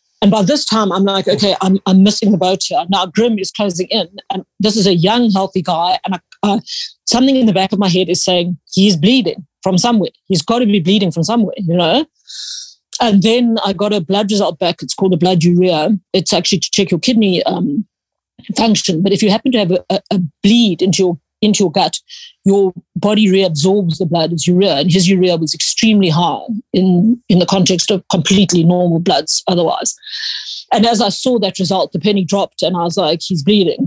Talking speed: 215 wpm